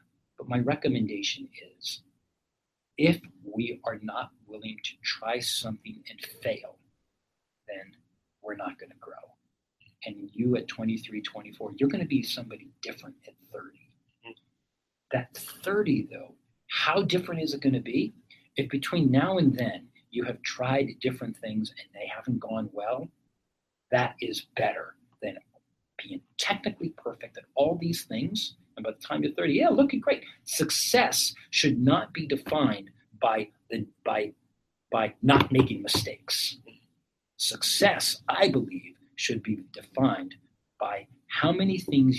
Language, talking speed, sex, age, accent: English, 140 wpm, male, 40-59, American